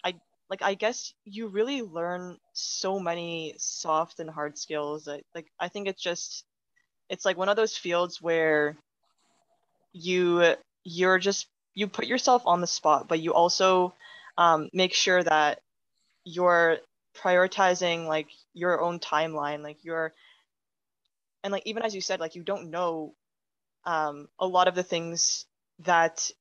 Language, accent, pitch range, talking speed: English, American, 160-185 Hz, 150 wpm